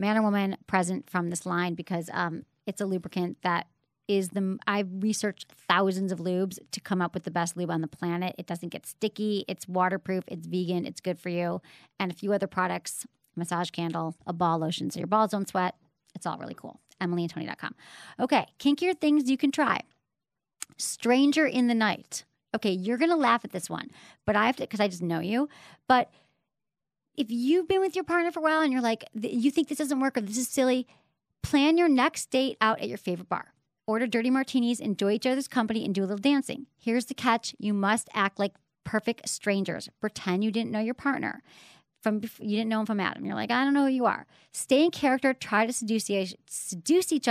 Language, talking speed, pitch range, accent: English, 215 wpm, 190-265 Hz, American